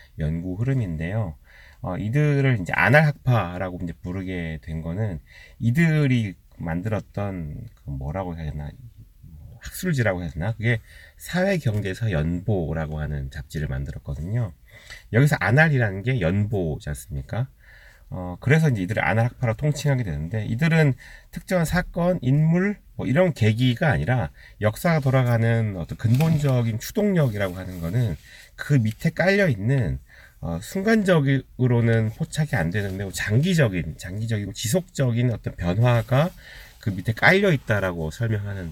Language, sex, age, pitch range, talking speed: English, male, 30-49, 90-135 Hz, 110 wpm